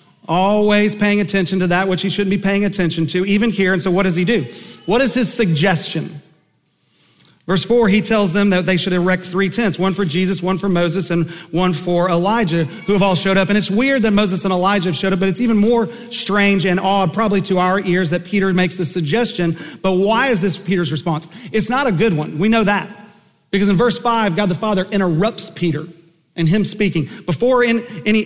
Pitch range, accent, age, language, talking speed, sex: 175-210 Hz, American, 40-59, English, 220 wpm, male